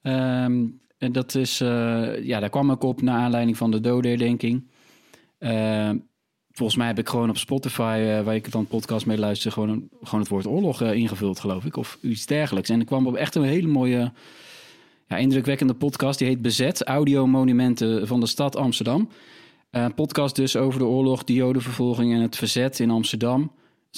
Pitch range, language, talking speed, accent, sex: 110-125 Hz, Dutch, 195 wpm, Dutch, male